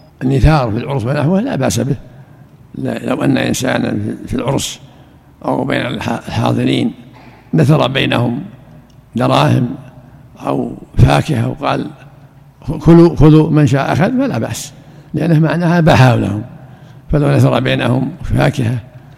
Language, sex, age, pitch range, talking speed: Arabic, male, 60-79, 130-155 Hz, 110 wpm